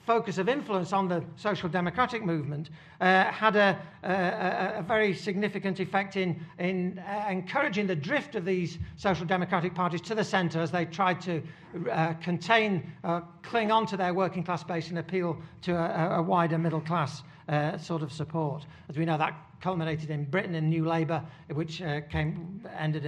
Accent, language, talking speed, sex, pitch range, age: British, English, 180 wpm, male, 155-190 Hz, 60-79